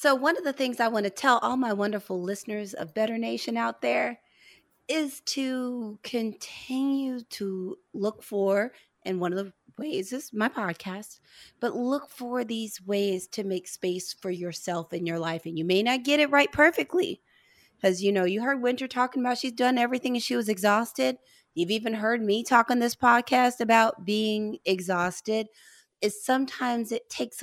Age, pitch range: 30-49, 195-255 Hz